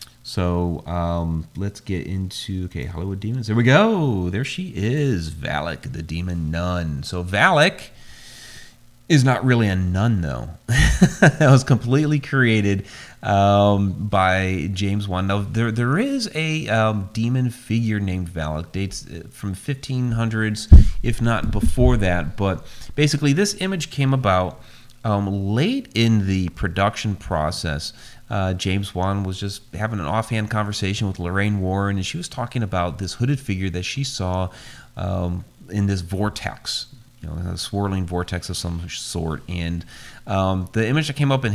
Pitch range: 90-120 Hz